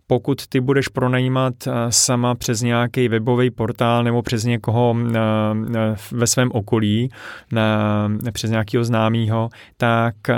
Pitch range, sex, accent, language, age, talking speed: 115-125 Hz, male, native, Czech, 30-49, 110 wpm